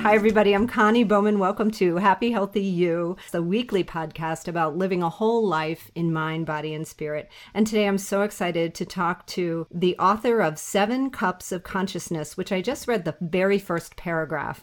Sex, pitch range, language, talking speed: female, 170-215 Hz, English, 190 wpm